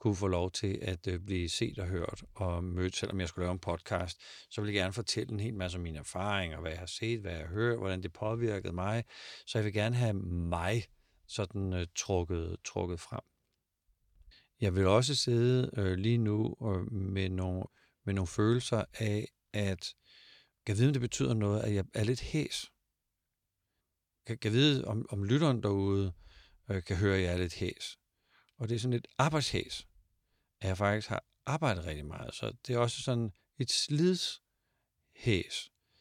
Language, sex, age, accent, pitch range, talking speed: Danish, male, 50-69, native, 90-115 Hz, 195 wpm